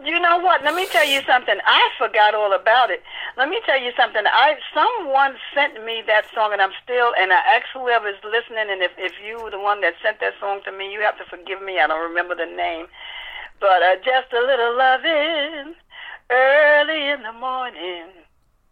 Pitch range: 205-300 Hz